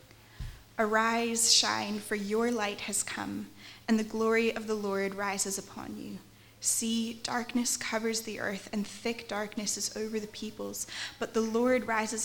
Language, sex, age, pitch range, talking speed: English, female, 10-29, 200-230 Hz, 155 wpm